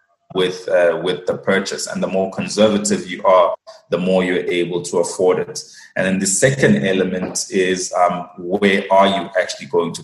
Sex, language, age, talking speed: male, English, 20-39, 185 wpm